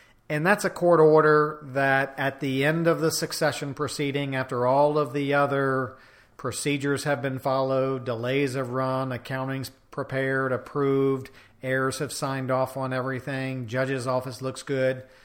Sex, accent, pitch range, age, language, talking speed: male, American, 130-145 Hz, 40-59, English, 150 wpm